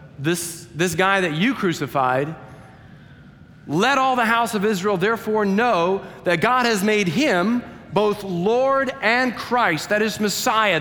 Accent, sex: American, male